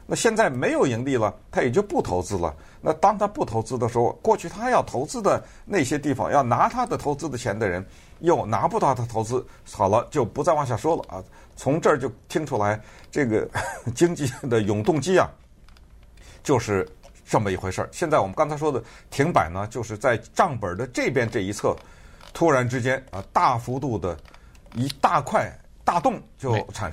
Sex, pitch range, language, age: male, 100-155 Hz, Chinese, 50-69